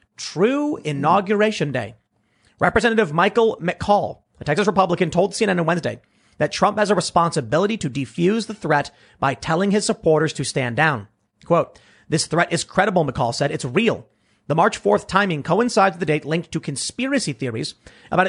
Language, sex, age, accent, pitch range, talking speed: English, male, 30-49, American, 140-185 Hz, 165 wpm